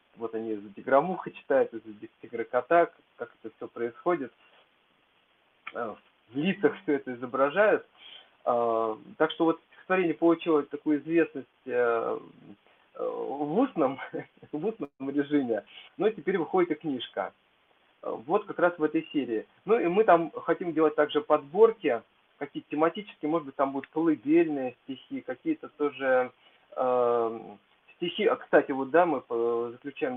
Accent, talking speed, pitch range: native, 125 wpm, 135-185 Hz